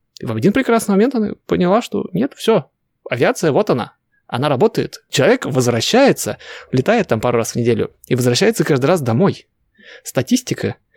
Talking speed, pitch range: 155 wpm, 115-155 Hz